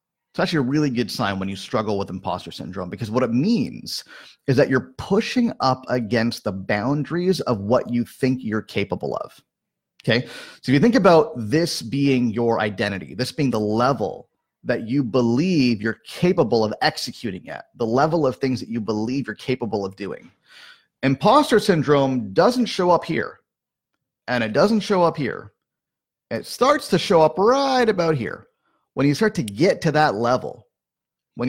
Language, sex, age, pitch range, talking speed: English, male, 30-49, 120-170 Hz, 175 wpm